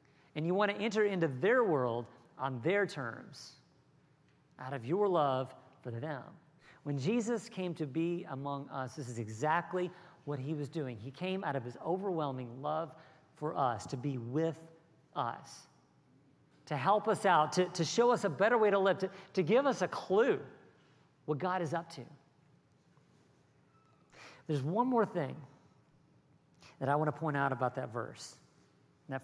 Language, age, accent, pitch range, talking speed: English, 50-69, American, 140-200 Hz, 170 wpm